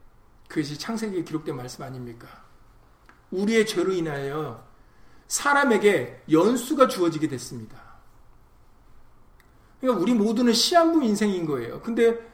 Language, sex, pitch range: Korean, male, 125-205 Hz